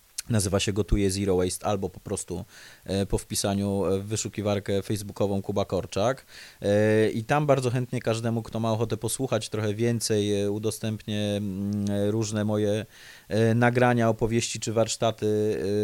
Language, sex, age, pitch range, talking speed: English, male, 30-49, 105-120 Hz, 125 wpm